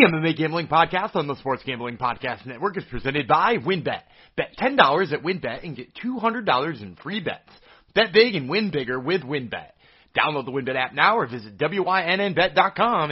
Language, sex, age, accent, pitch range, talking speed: English, male, 30-49, American, 140-210 Hz, 180 wpm